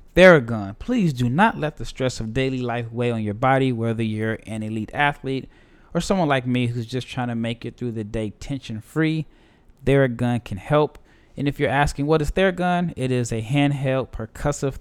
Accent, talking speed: American, 195 wpm